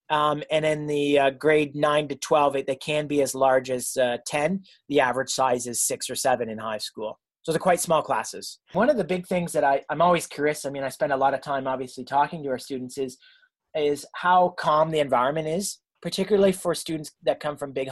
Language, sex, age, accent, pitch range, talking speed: English, male, 30-49, American, 130-160 Hz, 235 wpm